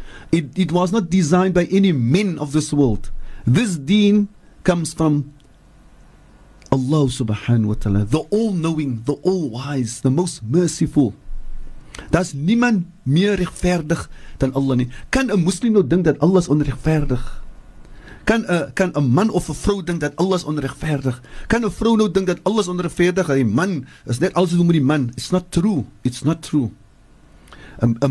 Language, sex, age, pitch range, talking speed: English, male, 50-69, 125-180 Hz, 150 wpm